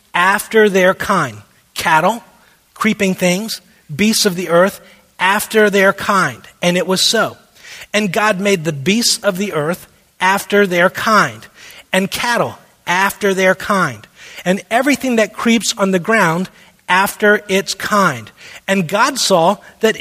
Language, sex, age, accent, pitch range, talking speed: English, male, 30-49, American, 165-210 Hz, 140 wpm